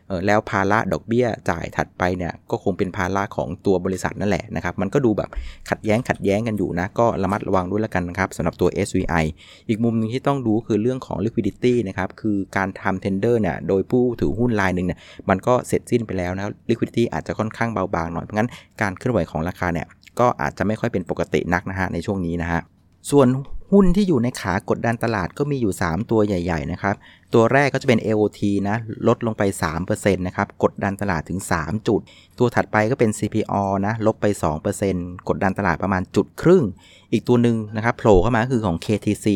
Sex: male